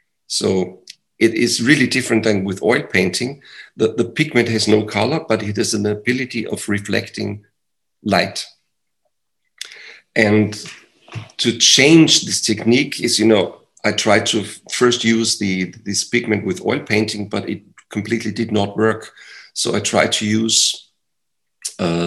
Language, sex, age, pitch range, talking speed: English, male, 50-69, 105-115 Hz, 145 wpm